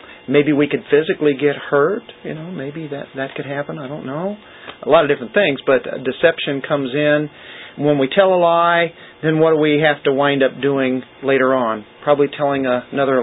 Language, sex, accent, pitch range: English, male, American, 140-175 Hz